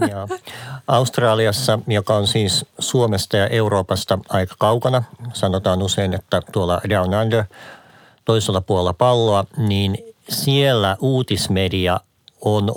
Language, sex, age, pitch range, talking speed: Finnish, male, 50-69, 95-115 Hz, 110 wpm